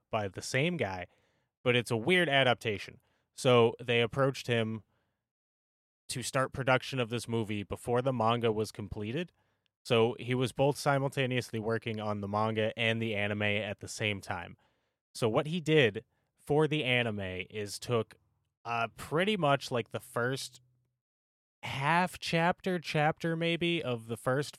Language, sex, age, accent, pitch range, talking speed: English, male, 30-49, American, 110-140 Hz, 150 wpm